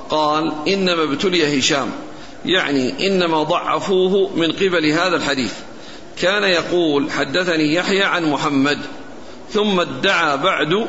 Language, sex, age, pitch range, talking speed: Arabic, male, 50-69, 155-190 Hz, 110 wpm